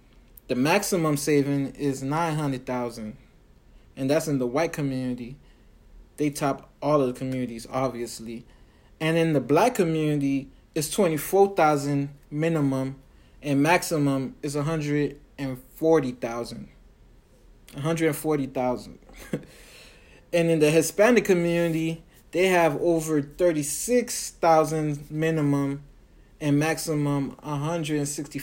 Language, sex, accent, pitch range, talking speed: English, male, American, 130-160 Hz, 130 wpm